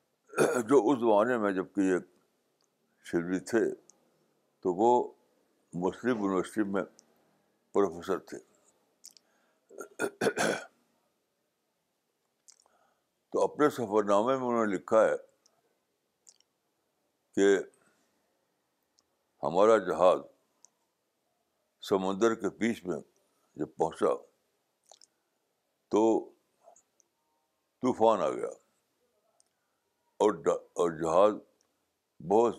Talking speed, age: 75 wpm, 60-79